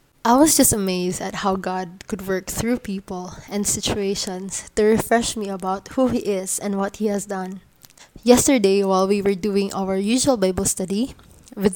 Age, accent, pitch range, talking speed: 20-39, Filipino, 190-225 Hz, 180 wpm